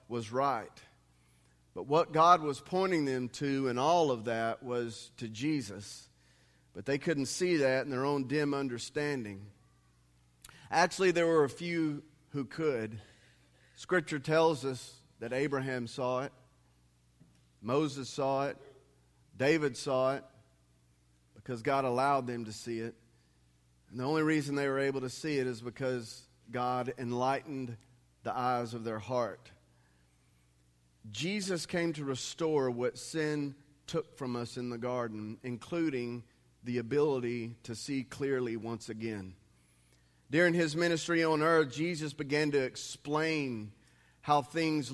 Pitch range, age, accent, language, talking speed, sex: 115-155 Hz, 40-59, American, English, 140 wpm, male